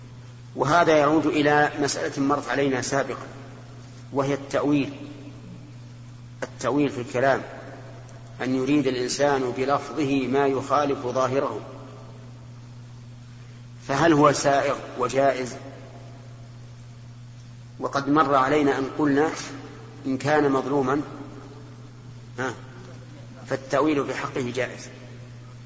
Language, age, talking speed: Arabic, 50-69, 80 wpm